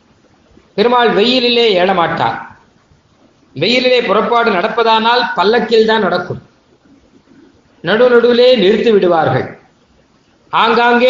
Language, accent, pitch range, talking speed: Tamil, native, 195-240 Hz, 70 wpm